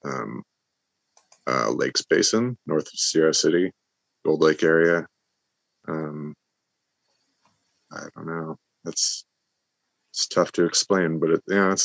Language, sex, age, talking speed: English, male, 30-49, 125 wpm